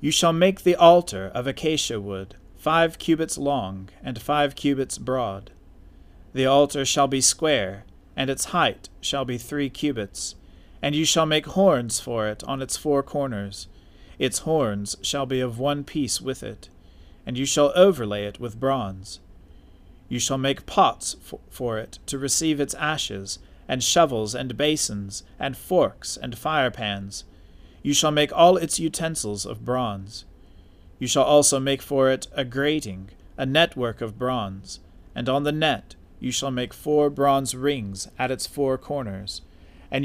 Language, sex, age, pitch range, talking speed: English, male, 40-59, 100-145 Hz, 160 wpm